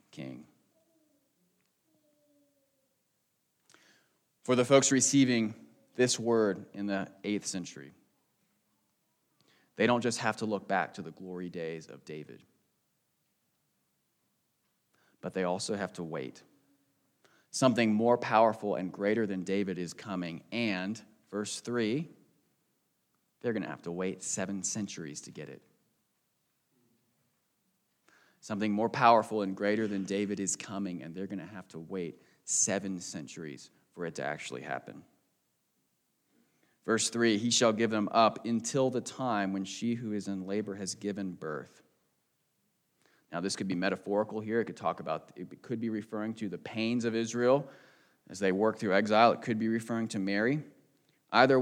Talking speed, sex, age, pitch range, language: 145 wpm, male, 30-49, 95-120 Hz, English